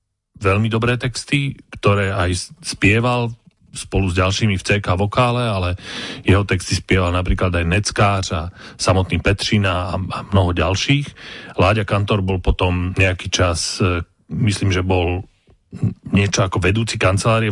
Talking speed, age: 135 wpm, 40-59